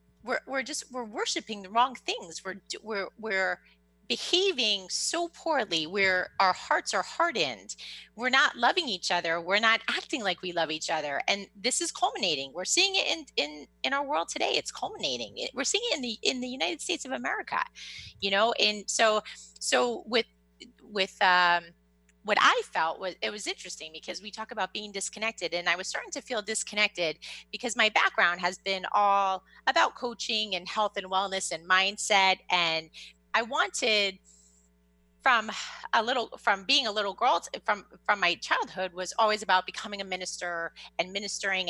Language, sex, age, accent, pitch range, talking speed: English, female, 30-49, American, 175-220 Hz, 175 wpm